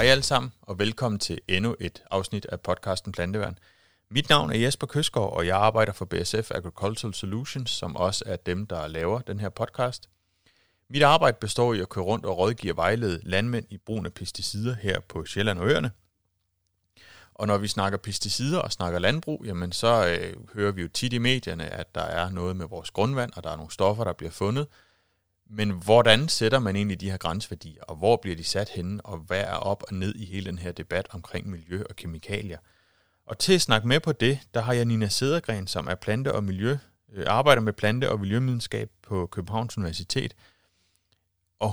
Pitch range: 90-115 Hz